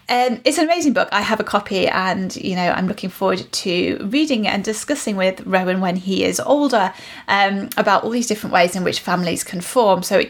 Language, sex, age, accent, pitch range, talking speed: English, female, 30-49, British, 190-240 Hz, 220 wpm